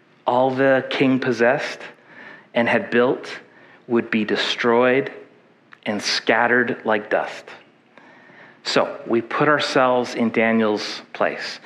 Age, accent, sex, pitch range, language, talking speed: 40-59, American, male, 115-130 Hz, English, 110 wpm